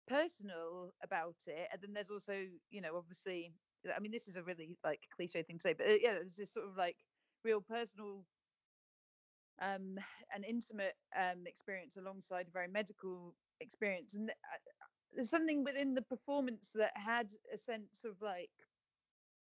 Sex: female